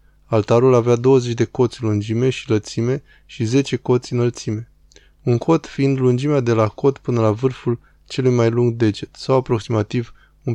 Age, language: 20-39, Romanian